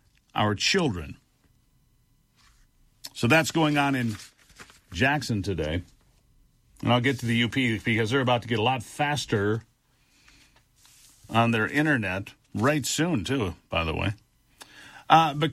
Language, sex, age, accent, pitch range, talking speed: English, male, 50-69, American, 125-180 Hz, 130 wpm